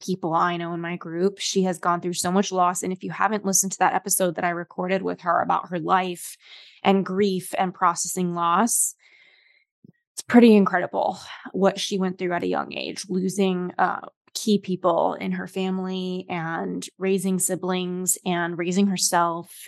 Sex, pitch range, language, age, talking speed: female, 180-200 Hz, English, 20-39, 175 wpm